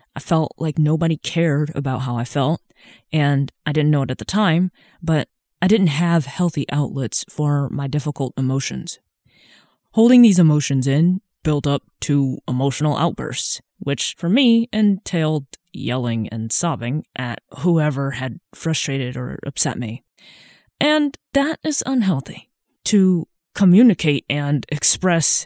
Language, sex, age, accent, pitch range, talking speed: English, female, 20-39, American, 135-175 Hz, 135 wpm